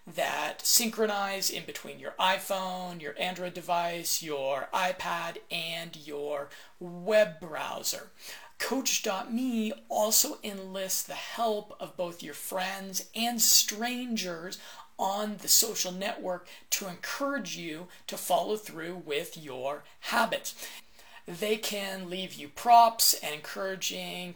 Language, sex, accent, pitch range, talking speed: English, male, American, 180-220 Hz, 115 wpm